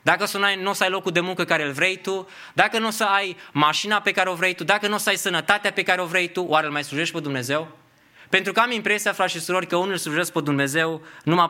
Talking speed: 280 wpm